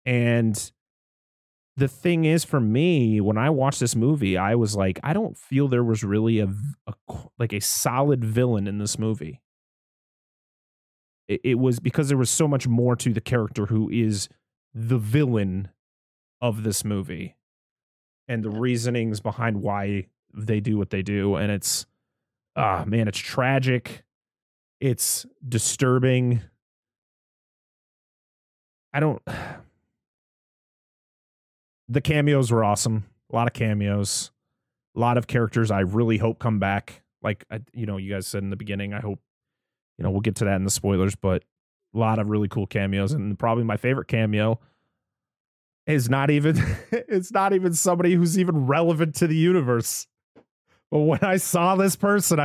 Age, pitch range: 30-49, 105-150 Hz